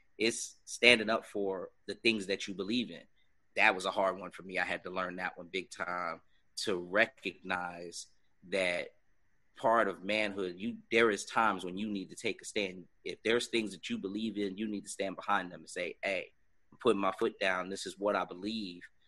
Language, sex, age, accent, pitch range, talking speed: English, male, 30-49, American, 95-115 Hz, 215 wpm